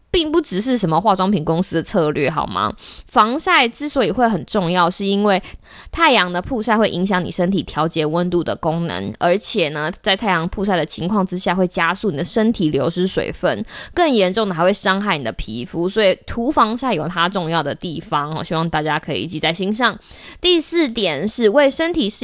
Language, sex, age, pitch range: Chinese, female, 20-39, 180-250 Hz